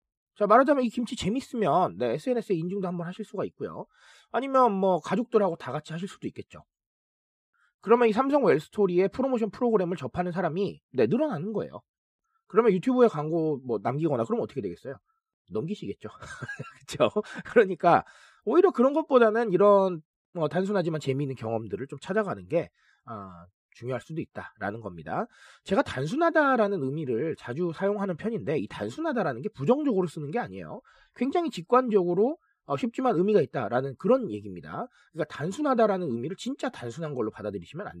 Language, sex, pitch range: Korean, male, 160-245 Hz